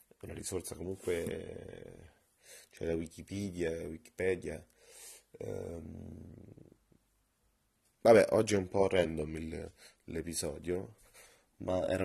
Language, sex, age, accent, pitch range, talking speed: Italian, male, 30-49, native, 85-105 Hz, 95 wpm